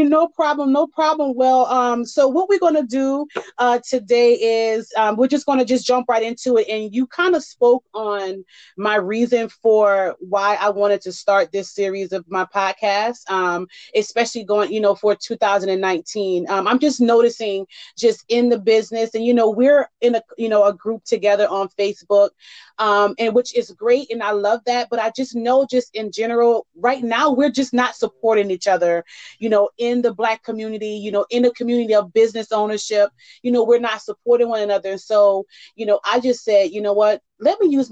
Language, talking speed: English, 205 wpm